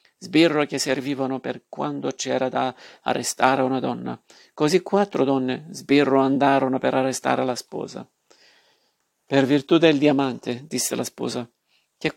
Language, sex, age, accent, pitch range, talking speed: Italian, male, 50-69, native, 130-145 Hz, 135 wpm